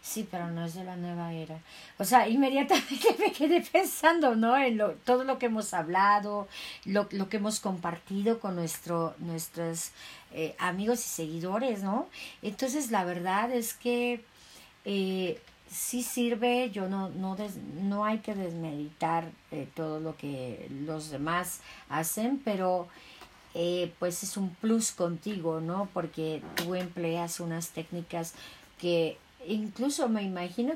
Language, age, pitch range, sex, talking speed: Spanish, 40-59, 165-215 Hz, female, 145 wpm